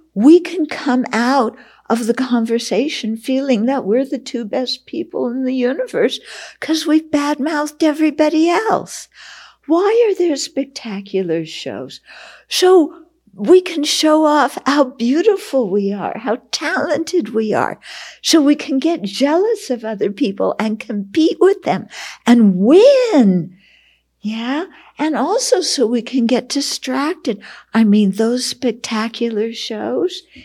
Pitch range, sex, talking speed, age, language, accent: 230-310 Hz, female, 130 wpm, 60-79, English, American